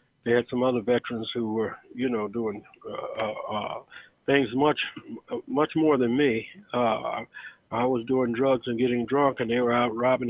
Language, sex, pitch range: English, male, 120-160 Hz